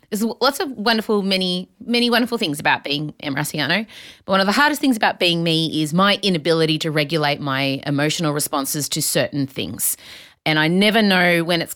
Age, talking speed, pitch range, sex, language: 30-49, 190 wpm, 160-230 Hz, female, English